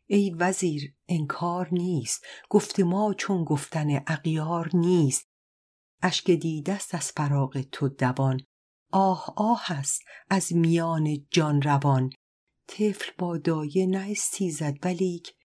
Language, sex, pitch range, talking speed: Persian, female, 150-200 Hz, 110 wpm